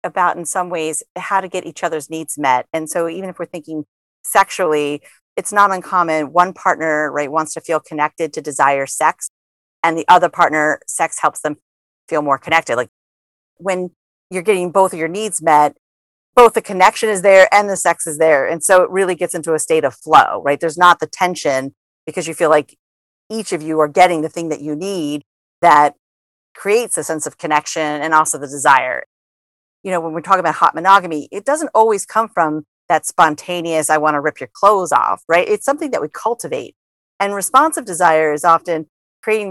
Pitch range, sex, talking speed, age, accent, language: 150-185 Hz, female, 200 wpm, 40-59, American, English